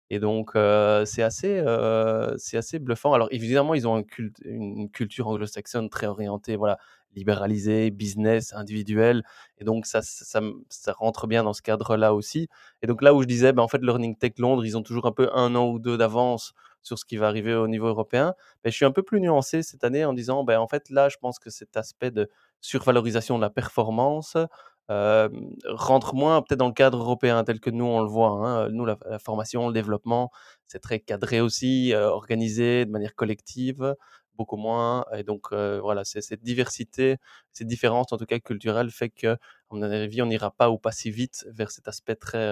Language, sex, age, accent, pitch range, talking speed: French, male, 20-39, French, 110-125 Hz, 215 wpm